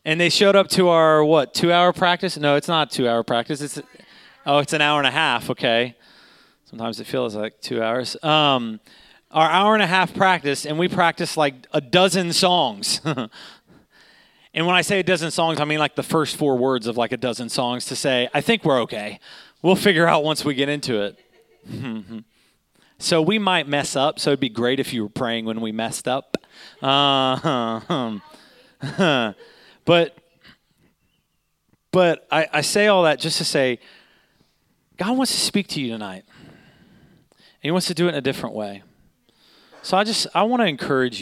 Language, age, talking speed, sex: English, 30-49, 190 wpm, male